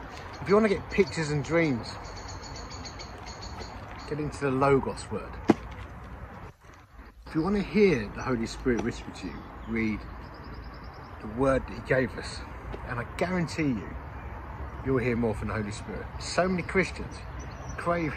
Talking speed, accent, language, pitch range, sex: 150 wpm, British, English, 80-120 Hz, male